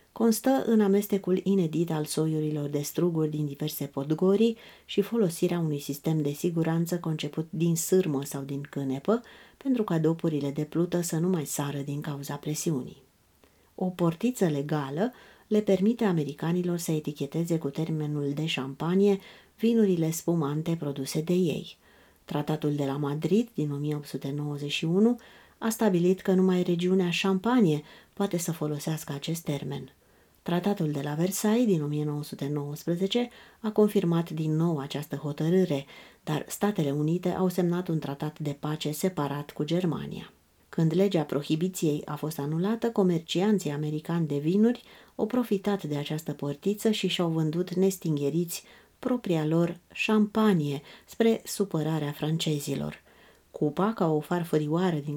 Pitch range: 145-185 Hz